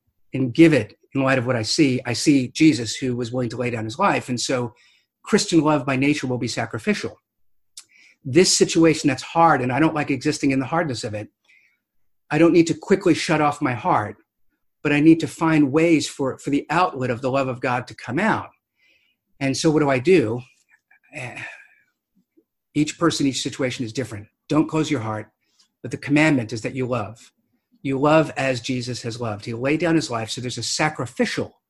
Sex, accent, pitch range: male, American, 125-160 Hz